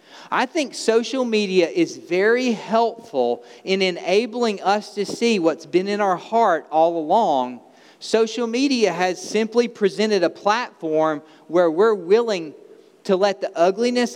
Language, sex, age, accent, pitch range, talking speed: English, male, 40-59, American, 185-250 Hz, 140 wpm